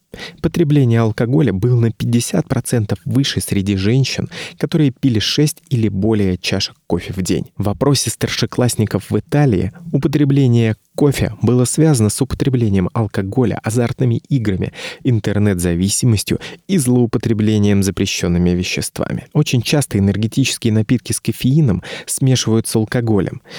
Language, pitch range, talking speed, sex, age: Russian, 100-135 Hz, 115 wpm, male, 30-49